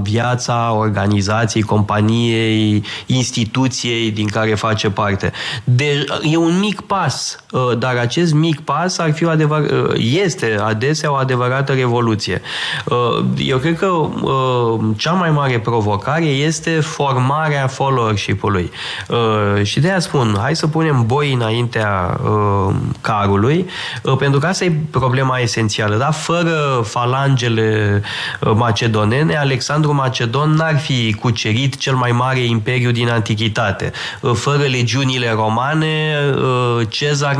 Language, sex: Romanian, male